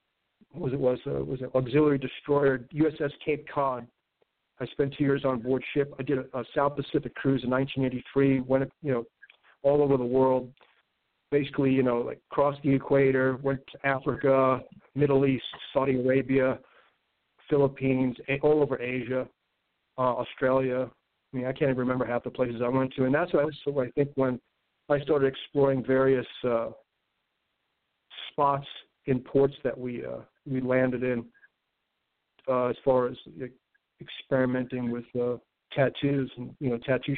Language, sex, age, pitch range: English, male, 50-69, 125-140 Hz